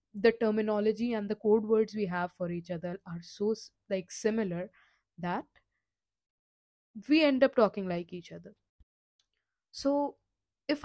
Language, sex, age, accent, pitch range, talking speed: English, female, 20-39, Indian, 180-240 Hz, 140 wpm